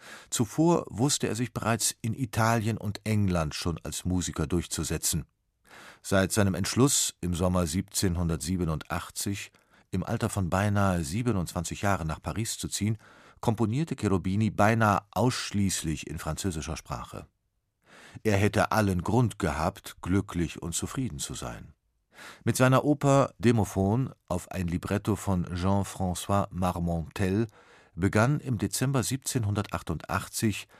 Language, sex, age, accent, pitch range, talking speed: German, male, 50-69, German, 90-110 Hz, 115 wpm